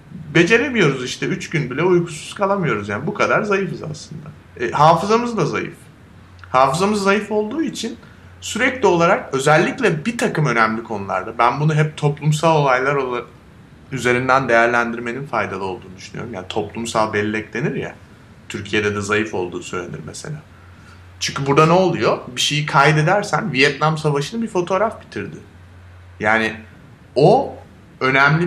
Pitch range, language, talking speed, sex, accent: 120-180 Hz, Turkish, 135 wpm, male, native